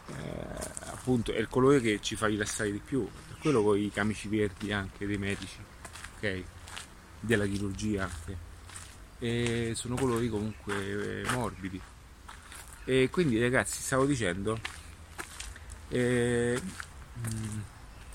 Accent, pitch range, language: native, 90-120 Hz, Italian